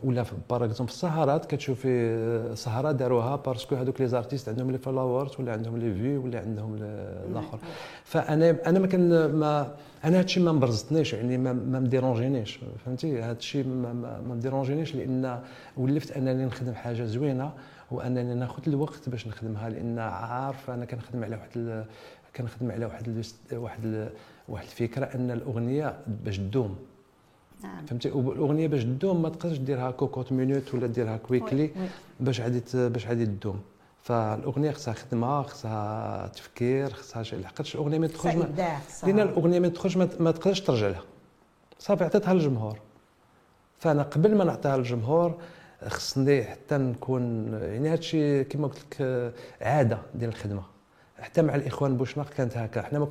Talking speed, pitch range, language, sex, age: 80 wpm, 115-145 Hz, French, male, 50-69